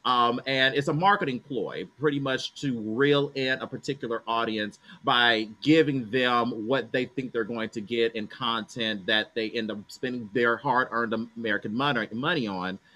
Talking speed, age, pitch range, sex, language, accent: 170 wpm, 30-49, 110-140 Hz, male, English, American